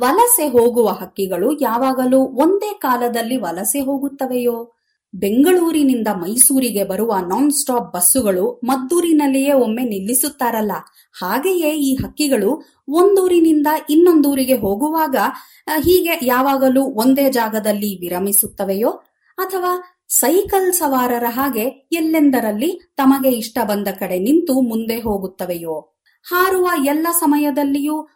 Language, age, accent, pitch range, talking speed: Kannada, 30-49, native, 230-320 Hz, 90 wpm